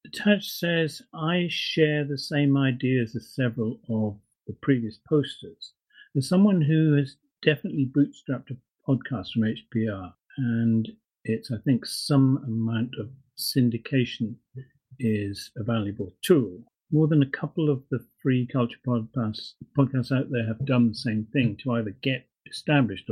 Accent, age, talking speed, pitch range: British, 50-69, 145 wpm, 110-140 Hz